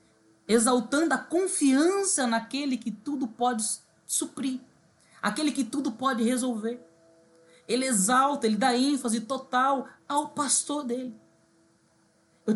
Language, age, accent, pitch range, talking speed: Portuguese, 20-39, Brazilian, 210-275 Hz, 110 wpm